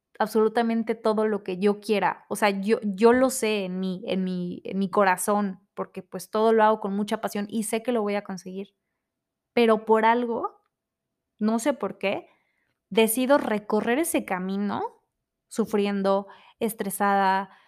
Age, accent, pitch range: 20-39, Mexican, 215-285 Hz